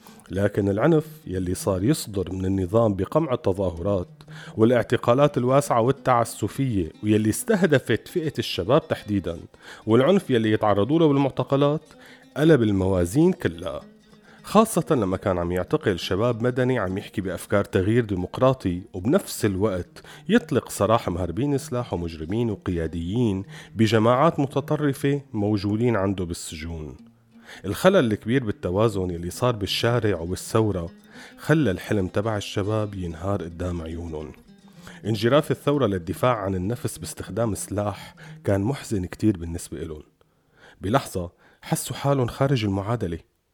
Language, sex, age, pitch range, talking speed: Arabic, male, 40-59, 95-135 Hz, 110 wpm